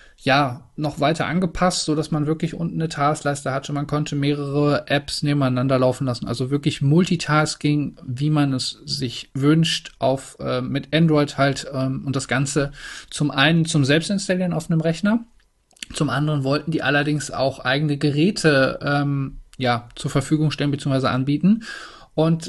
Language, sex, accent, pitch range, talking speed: German, male, German, 135-160 Hz, 155 wpm